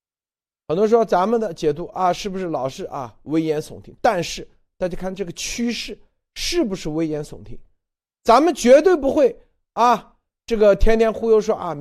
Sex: male